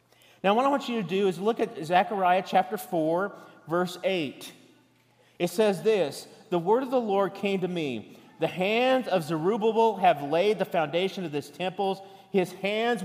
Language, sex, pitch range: English, male, 170-215 Hz